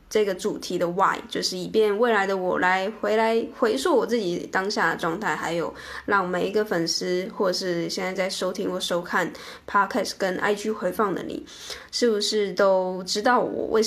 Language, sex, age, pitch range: Chinese, female, 10-29, 185-230 Hz